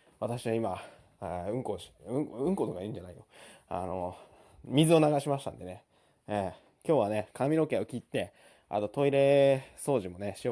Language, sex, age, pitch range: Japanese, male, 20-39, 110-170 Hz